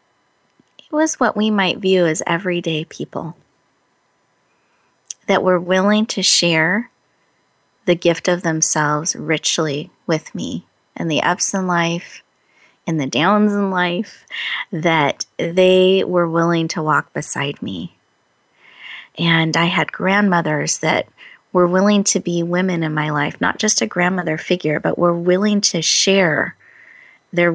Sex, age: female, 30-49